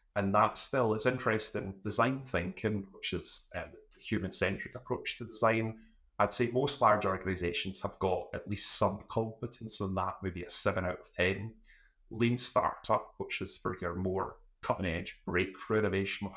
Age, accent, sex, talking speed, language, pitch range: 30-49, British, male, 170 wpm, English, 95-110 Hz